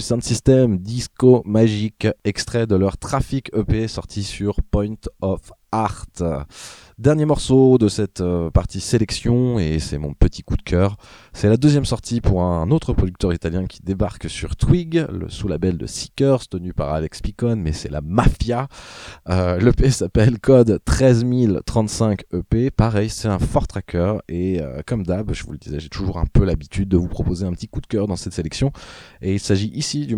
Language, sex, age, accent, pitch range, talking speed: French, male, 20-39, French, 85-115 Hz, 185 wpm